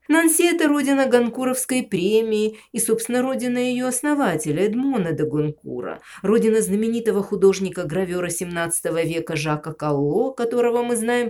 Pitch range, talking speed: 160-245 Hz, 125 wpm